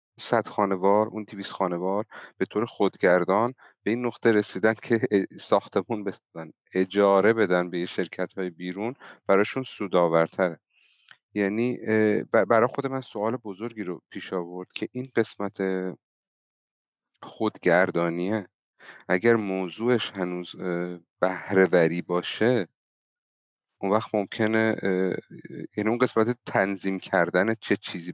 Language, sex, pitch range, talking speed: Persian, male, 90-105 Hz, 105 wpm